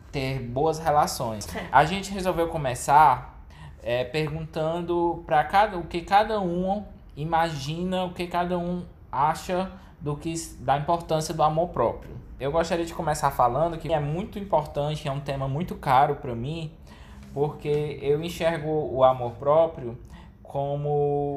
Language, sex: Portuguese, male